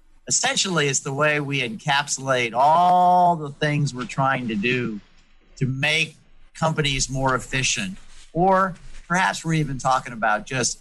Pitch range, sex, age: 125-155 Hz, male, 50-69